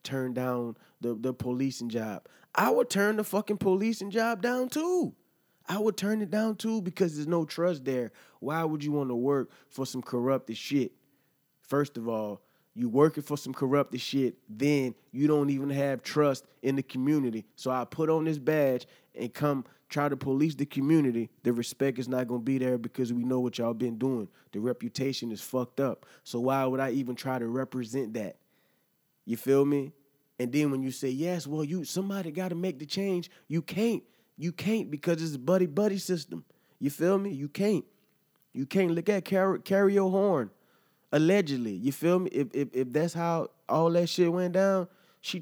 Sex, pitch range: male, 130-180 Hz